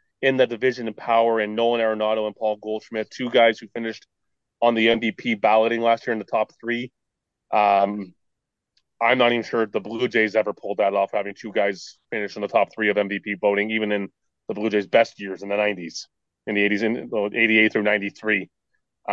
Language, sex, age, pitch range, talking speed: English, male, 30-49, 105-125 Hz, 205 wpm